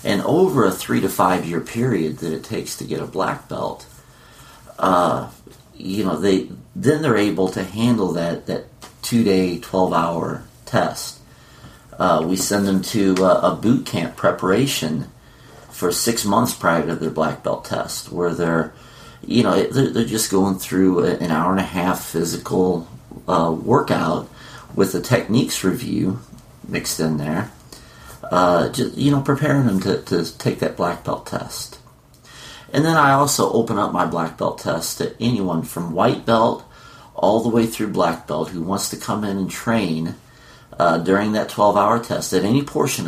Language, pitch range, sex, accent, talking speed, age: English, 85-115 Hz, male, American, 175 wpm, 50-69